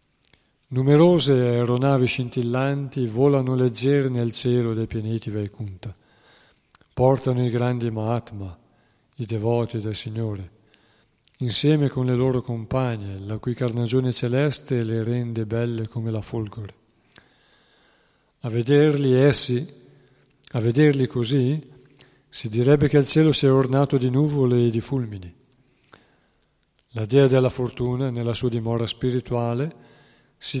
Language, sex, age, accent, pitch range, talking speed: Italian, male, 50-69, native, 115-135 Hz, 120 wpm